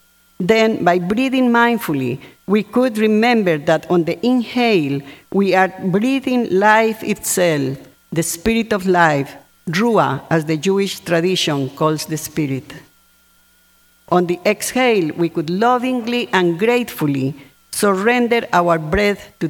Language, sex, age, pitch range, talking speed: English, female, 50-69, 165-210 Hz, 125 wpm